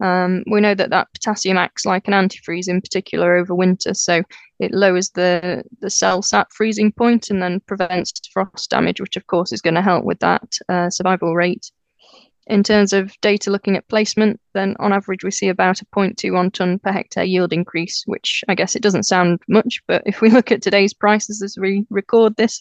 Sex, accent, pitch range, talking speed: female, British, 185-210 Hz, 205 wpm